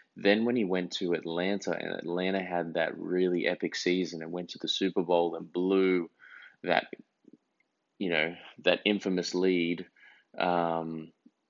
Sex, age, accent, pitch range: male, 20-39, Australian, 85-95 Hz